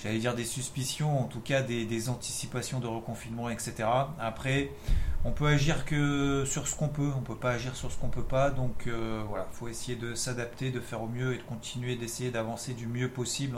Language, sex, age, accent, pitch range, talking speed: French, male, 30-49, French, 115-140 Hz, 235 wpm